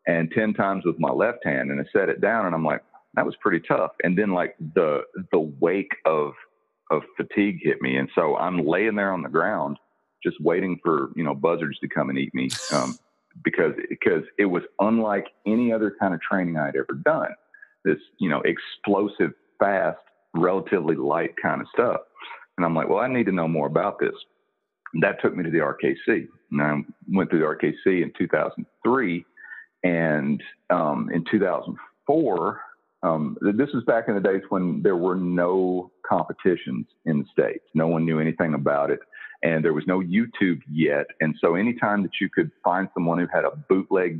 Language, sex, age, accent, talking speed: English, male, 40-59, American, 190 wpm